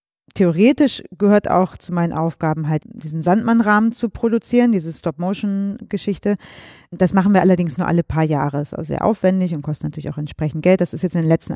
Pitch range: 165-190 Hz